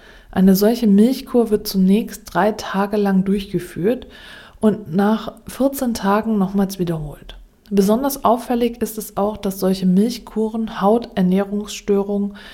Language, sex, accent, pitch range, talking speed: German, female, German, 185-225 Hz, 115 wpm